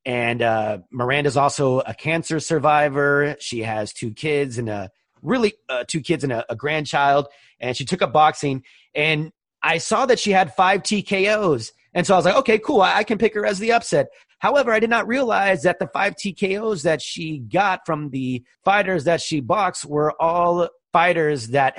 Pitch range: 130-185 Hz